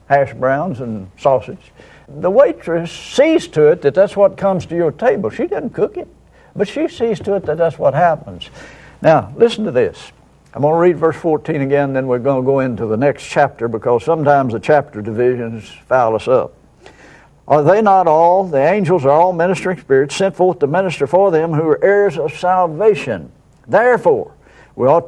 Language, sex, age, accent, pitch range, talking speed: English, male, 60-79, American, 140-185 Hz, 195 wpm